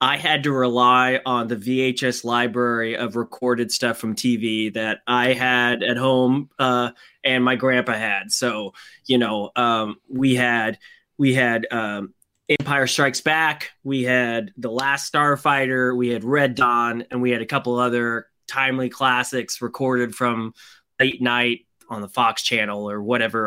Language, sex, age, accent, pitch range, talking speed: English, male, 20-39, American, 120-140 Hz, 160 wpm